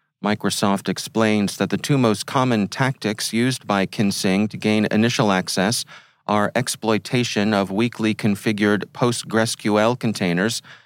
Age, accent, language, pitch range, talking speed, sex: 40-59, American, English, 100-125 Hz, 120 wpm, male